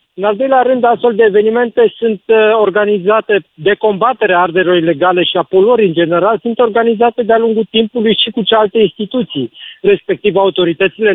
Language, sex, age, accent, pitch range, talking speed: Romanian, male, 40-59, native, 175-225 Hz, 165 wpm